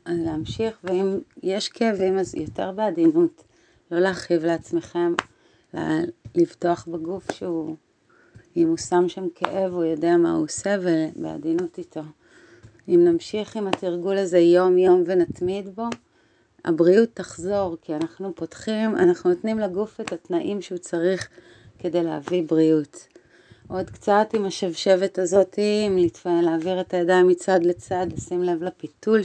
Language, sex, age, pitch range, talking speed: Hebrew, female, 30-49, 165-195 Hz, 130 wpm